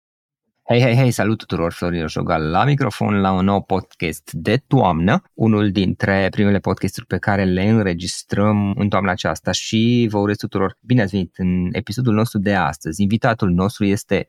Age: 20-39